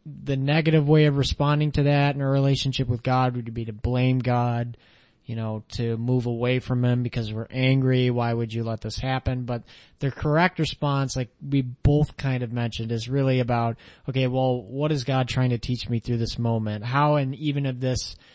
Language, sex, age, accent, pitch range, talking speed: English, male, 30-49, American, 115-135 Hz, 205 wpm